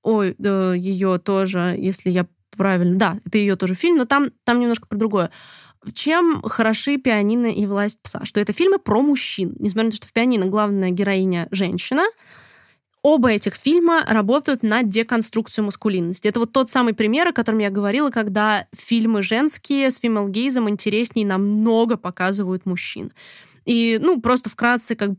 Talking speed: 170 wpm